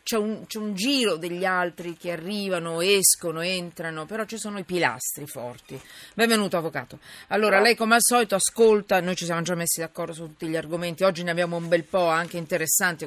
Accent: native